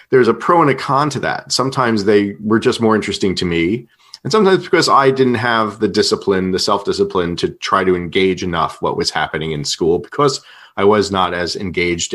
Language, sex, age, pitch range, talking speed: English, male, 40-59, 90-120 Hz, 205 wpm